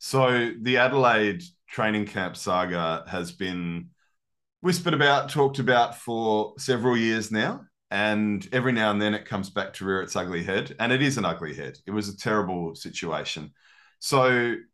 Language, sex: English, male